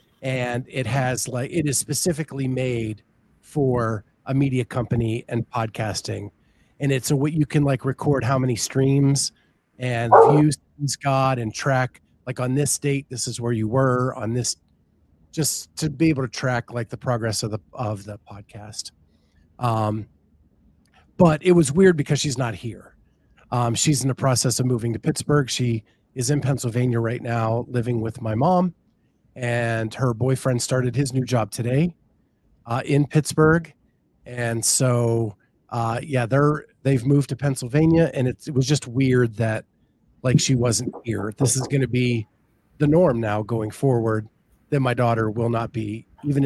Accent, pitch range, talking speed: American, 115-140 Hz, 170 wpm